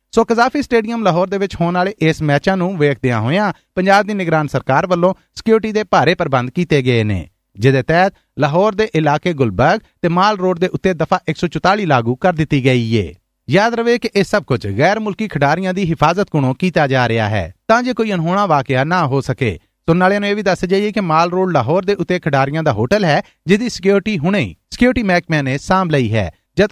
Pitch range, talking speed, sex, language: 145-200 Hz, 105 wpm, male, Punjabi